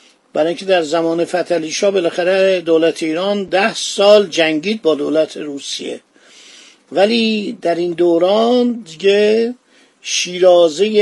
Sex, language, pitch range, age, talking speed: male, Persian, 165-205 Hz, 50-69, 115 wpm